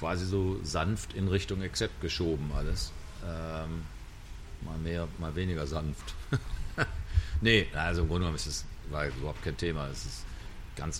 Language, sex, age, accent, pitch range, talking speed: German, male, 40-59, German, 80-105 Hz, 145 wpm